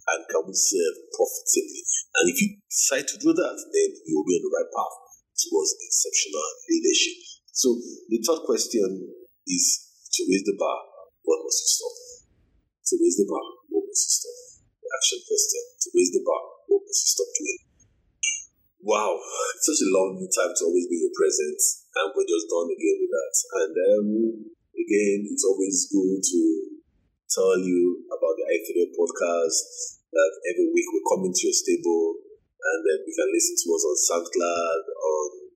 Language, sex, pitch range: English, male, 345-470 Hz